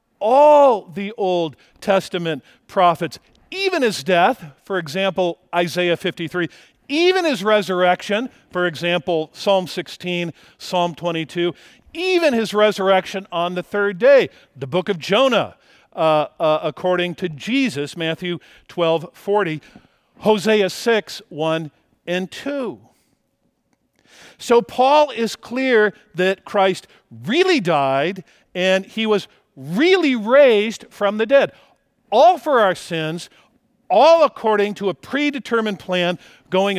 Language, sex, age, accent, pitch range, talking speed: English, male, 50-69, American, 165-215 Hz, 115 wpm